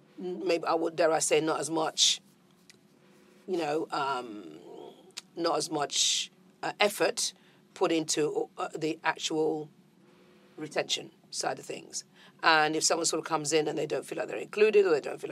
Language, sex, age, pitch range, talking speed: English, female, 40-59, 155-190 Hz, 165 wpm